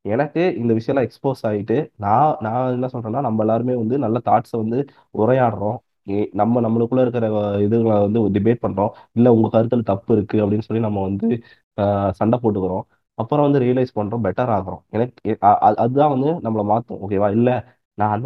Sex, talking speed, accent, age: male, 160 wpm, native, 20-39